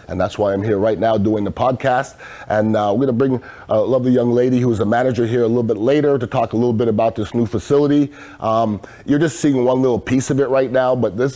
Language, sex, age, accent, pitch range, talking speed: English, male, 30-49, American, 110-135 Hz, 270 wpm